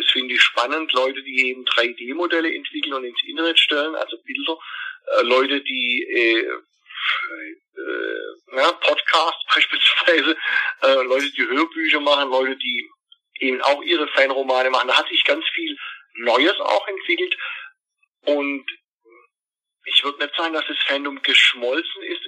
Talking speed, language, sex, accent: 125 wpm, German, male, German